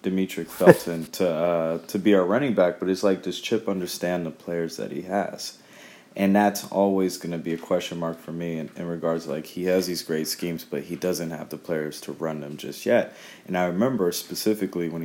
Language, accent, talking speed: English, American, 225 wpm